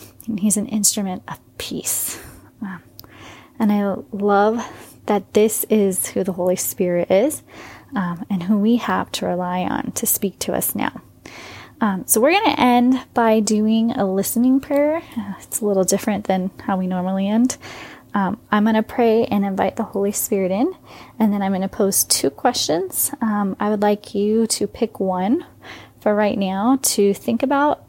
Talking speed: 180 wpm